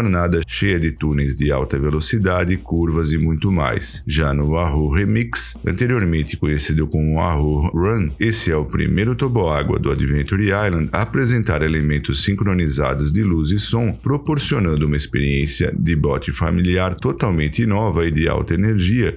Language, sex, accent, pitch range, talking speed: Portuguese, male, Brazilian, 75-105 Hz, 155 wpm